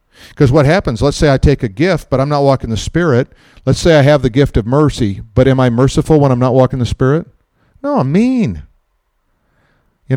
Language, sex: English, male